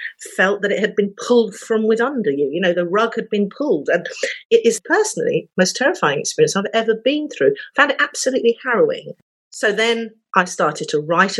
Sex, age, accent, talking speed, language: female, 50-69, British, 210 wpm, English